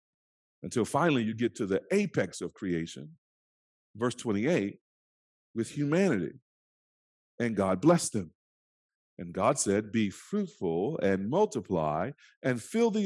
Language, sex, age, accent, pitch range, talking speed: English, male, 40-59, American, 115-185 Hz, 125 wpm